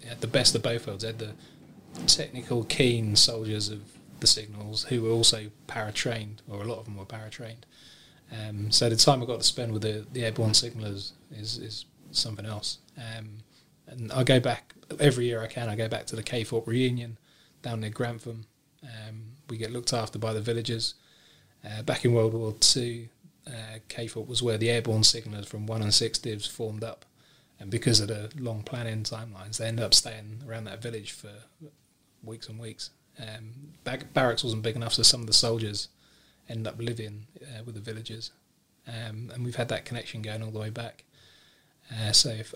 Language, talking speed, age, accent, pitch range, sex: English, 195 wpm, 20-39, British, 110-120 Hz, male